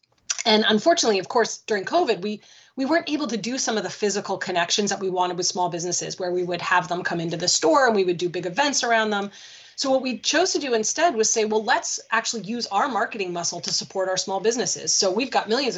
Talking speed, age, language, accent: 245 wpm, 30-49, English, American